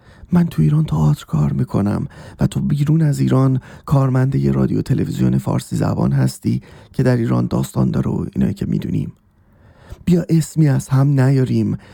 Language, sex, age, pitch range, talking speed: Persian, male, 30-49, 125-185 Hz, 150 wpm